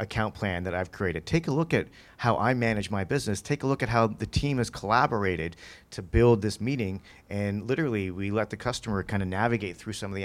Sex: male